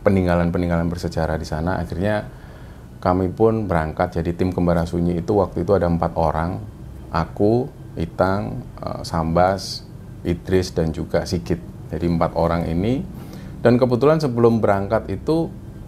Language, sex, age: Indonesian, male, 30-49